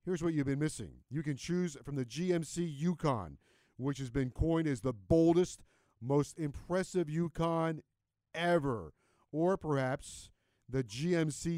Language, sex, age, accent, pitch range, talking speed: English, male, 50-69, American, 130-170 Hz, 140 wpm